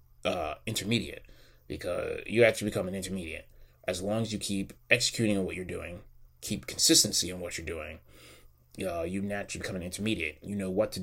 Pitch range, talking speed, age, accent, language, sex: 85-105 Hz, 180 wpm, 20-39, American, English, male